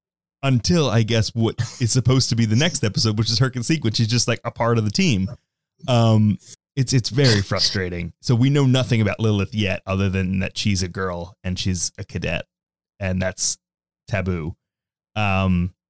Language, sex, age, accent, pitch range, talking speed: English, male, 20-39, American, 95-120 Hz, 185 wpm